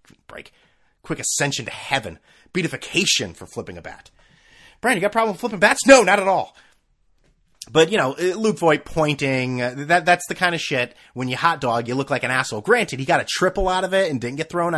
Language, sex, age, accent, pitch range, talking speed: English, male, 30-49, American, 125-190 Hz, 225 wpm